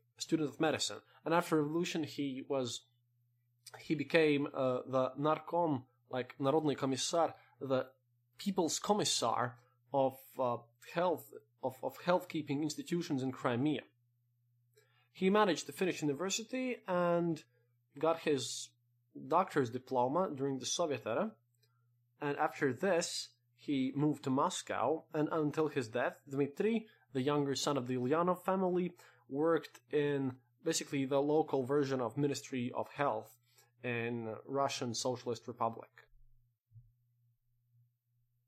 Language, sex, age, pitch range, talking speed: English, male, 20-39, 120-155 Hz, 120 wpm